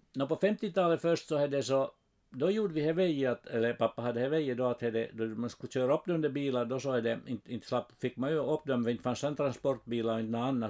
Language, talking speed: Swedish, 245 wpm